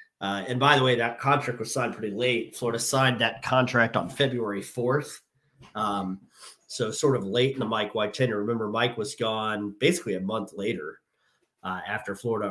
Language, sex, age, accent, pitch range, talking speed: English, male, 30-49, American, 105-135 Hz, 185 wpm